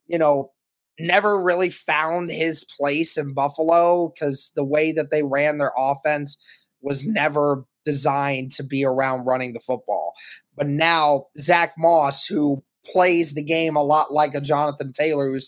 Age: 20-39